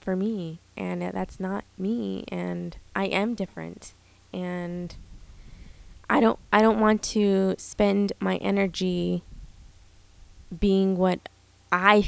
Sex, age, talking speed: female, 20-39, 115 wpm